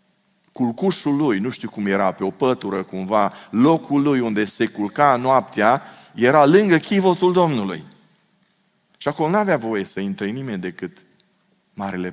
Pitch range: 90-135 Hz